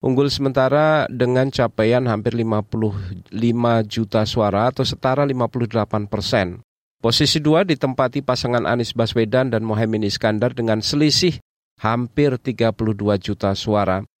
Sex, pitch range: male, 110-135 Hz